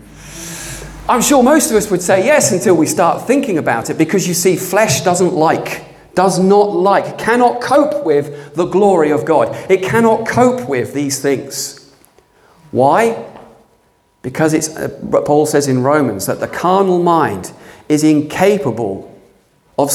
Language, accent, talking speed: English, British, 150 wpm